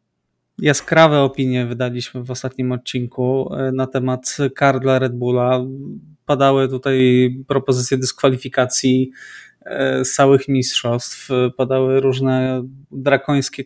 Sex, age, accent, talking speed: male, 20-39, native, 90 wpm